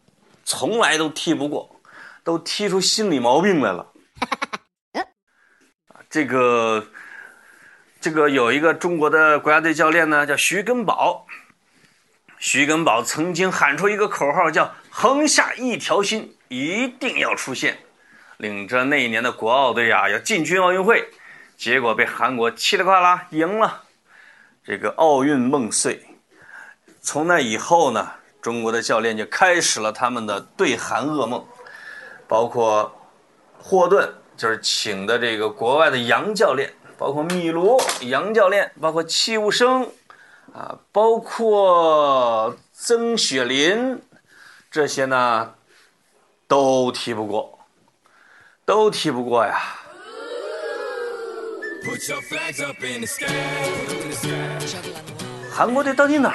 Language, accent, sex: Chinese, native, male